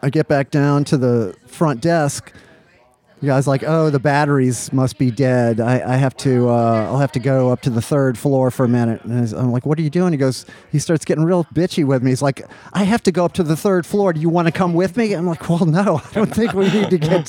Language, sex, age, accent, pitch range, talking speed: English, male, 40-59, American, 125-160 Hz, 275 wpm